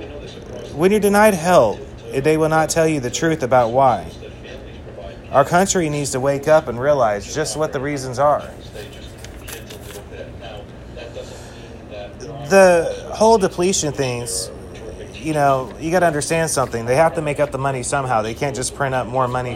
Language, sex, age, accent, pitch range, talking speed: English, male, 30-49, American, 120-165 Hz, 160 wpm